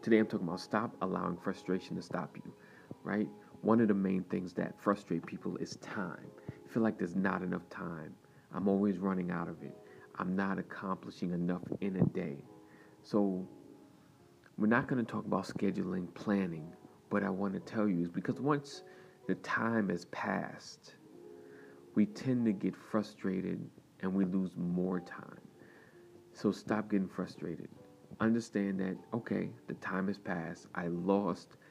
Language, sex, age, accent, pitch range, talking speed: English, male, 40-59, American, 90-105 Hz, 165 wpm